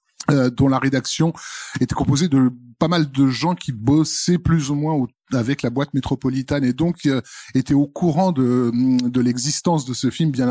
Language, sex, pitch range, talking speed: French, male, 115-145 Hz, 190 wpm